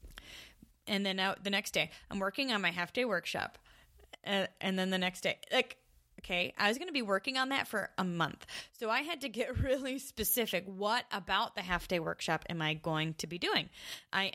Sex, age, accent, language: female, 20-39, American, English